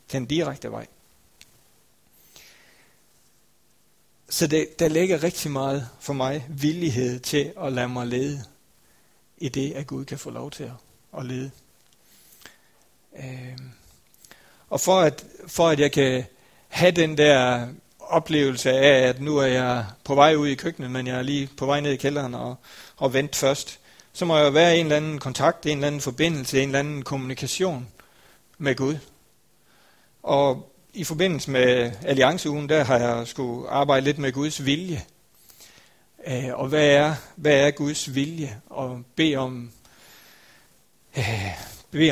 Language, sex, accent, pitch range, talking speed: Danish, male, native, 130-155 Hz, 145 wpm